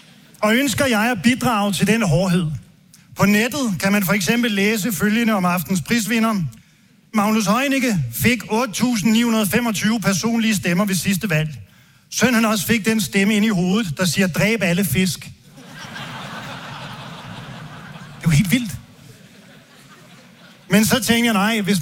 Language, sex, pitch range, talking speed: Danish, male, 175-220 Hz, 140 wpm